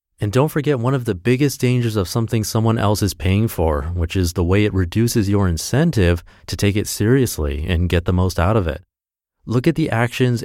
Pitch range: 85-115 Hz